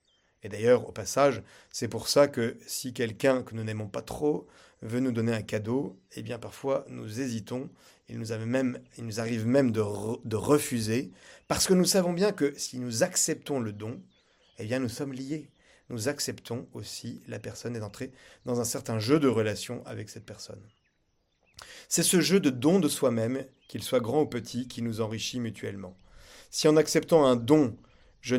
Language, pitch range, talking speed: French, 110-135 Hz, 185 wpm